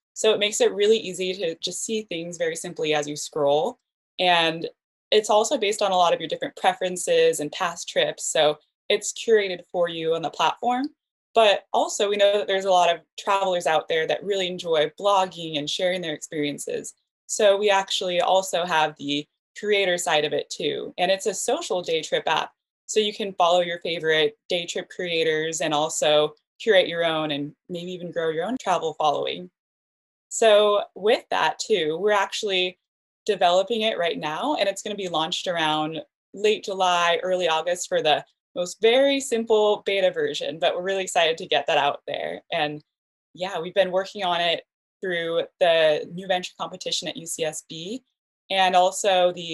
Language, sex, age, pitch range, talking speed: English, female, 20-39, 165-215 Hz, 180 wpm